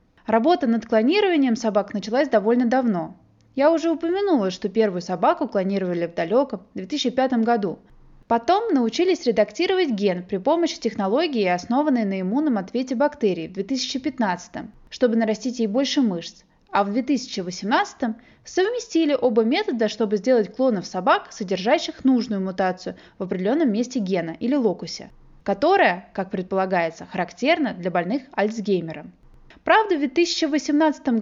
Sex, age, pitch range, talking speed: female, 20-39, 200-290 Hz, 125 wpm